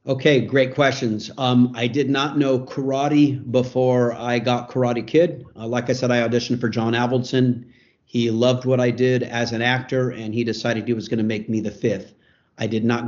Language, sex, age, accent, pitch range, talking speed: English, male, 50-69, American, 110-130 Hz, 205 wpm